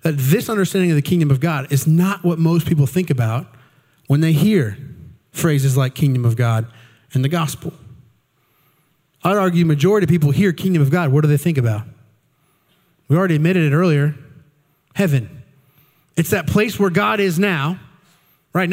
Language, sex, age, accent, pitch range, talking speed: English, male, 30-49, American, 145-185 Hz, 175 wpm